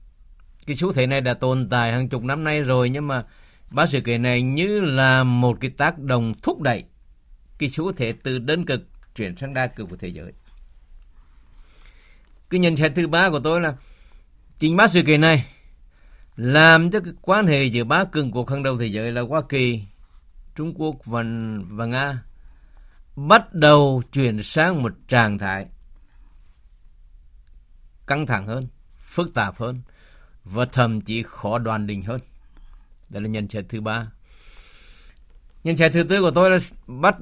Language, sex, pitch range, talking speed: Vietnamese, male, 100-150 Hz, 175 wpm